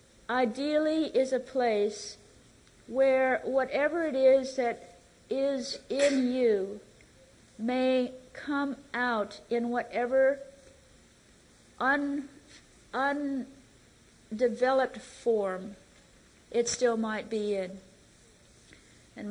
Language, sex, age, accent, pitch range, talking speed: English, female, 50-69, American, 220-260 Hz, 80 wpm